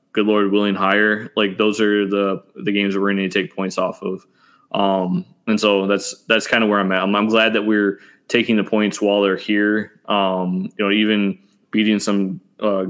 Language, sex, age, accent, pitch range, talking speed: English, male, 20-39, American, 95-105 Hz, 215 wpm